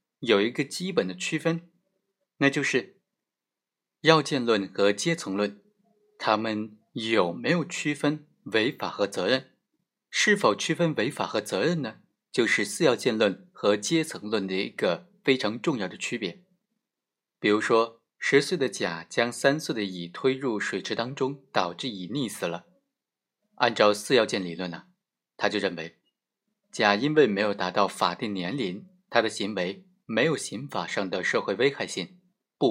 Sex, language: male, Chinese